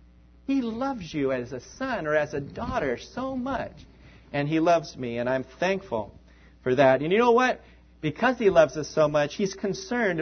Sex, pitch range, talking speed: male, 140-225 Hz, 195 wpm